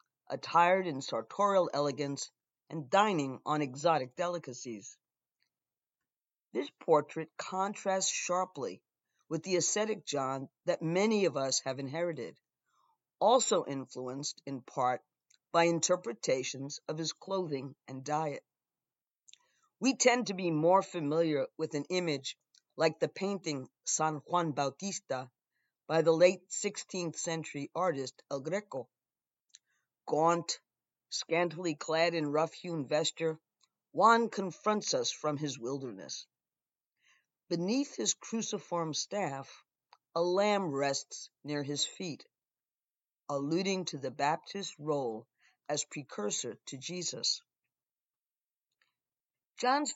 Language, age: English, 50-69